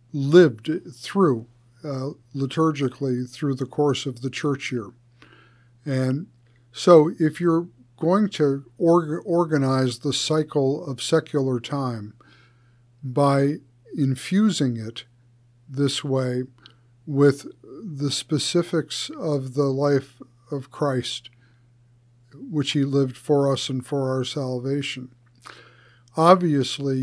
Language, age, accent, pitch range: English, 50-69, American, 125-145 Hz